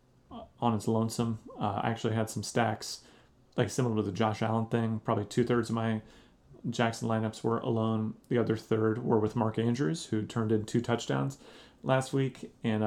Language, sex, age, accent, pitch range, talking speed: English, male, 30-49, American, 110-120 Hz, 180 wpm